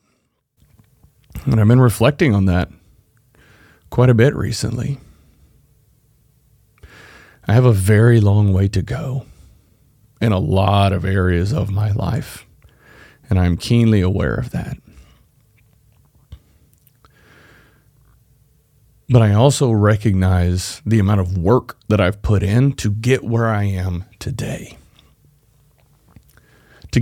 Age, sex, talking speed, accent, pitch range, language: 40-59, male, 115 wpm, American, 100-125 Hz, English